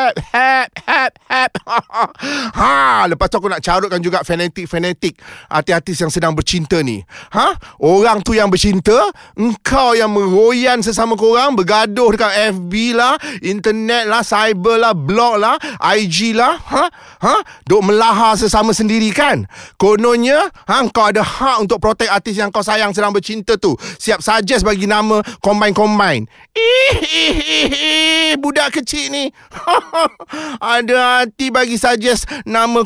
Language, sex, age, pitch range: Malay, male, 30-49, 205-255 Hz